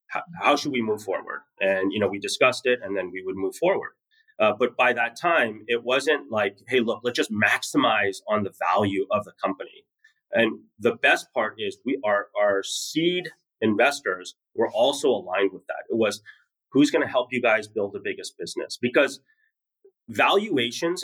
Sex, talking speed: male, 185 wpm